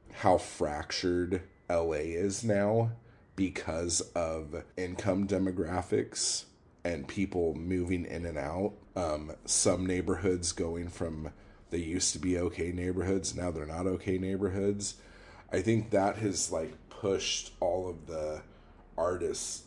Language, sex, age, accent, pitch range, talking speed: English, male, 30-49, American, 85-105 Hz, 125 wpm